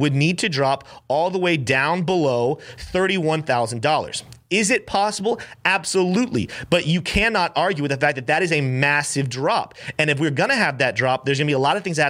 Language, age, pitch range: English, 30-49, 135-175 Hz